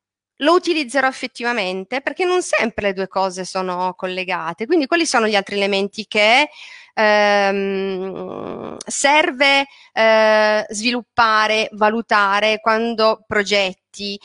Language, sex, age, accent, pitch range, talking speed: Italian, female, 30-49, native, 185-225 Hz, 105 wpm